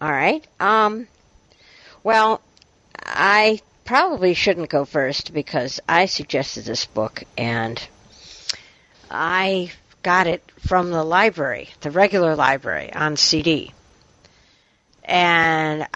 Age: 60-79